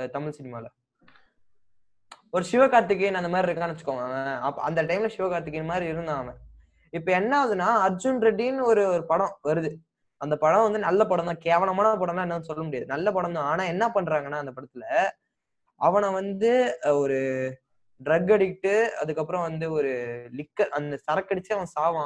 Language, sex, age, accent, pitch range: Tamil, male, 20-39, native, 155-215 Hz